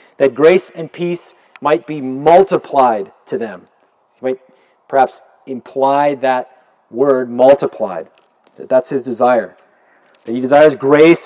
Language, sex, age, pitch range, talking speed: English, male, 40-59, 130-165 Hz, 130 wpm